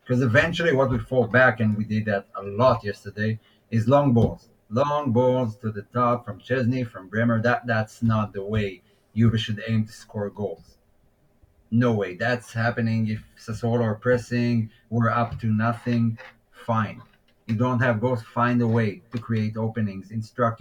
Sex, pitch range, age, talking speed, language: male, 105-120 Hz, 30-49, 175 wpm, English